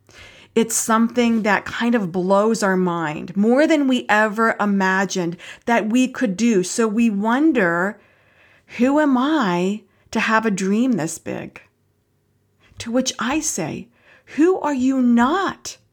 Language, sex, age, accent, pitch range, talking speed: English, female, 50-69, American, 200-275 Hz, 140 wpm